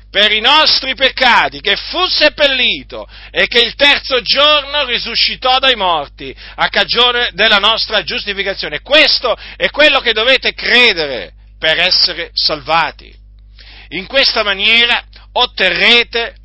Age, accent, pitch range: 50-69, native, 185-255 Hz